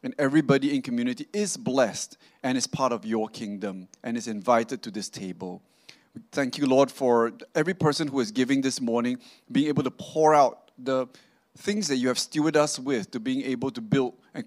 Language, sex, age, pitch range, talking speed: English, male, 30-49, 125-170 Hz, 200 wpm